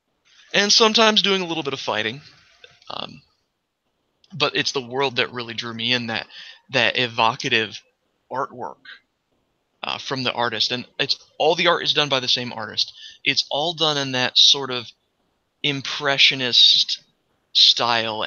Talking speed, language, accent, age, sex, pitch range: 150 wpm, English, American, 30-49, male, 120-140 Hz